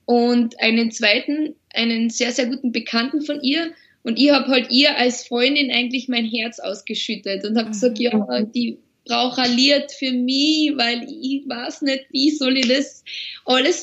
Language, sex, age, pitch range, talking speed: German, female, 20-39, 240-280 Hz, 170 wpm